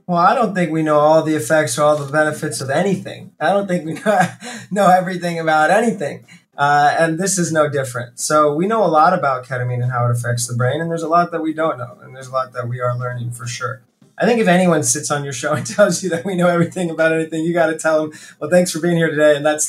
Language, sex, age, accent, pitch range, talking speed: English, male, 20-39, American, 130-170 Hz, 275 wpm